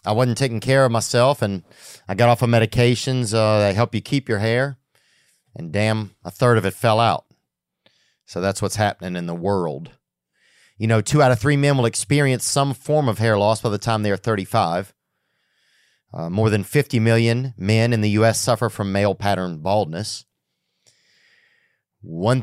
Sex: male